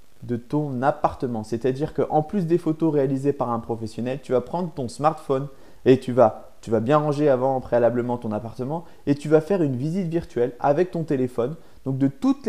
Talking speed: 190 wpm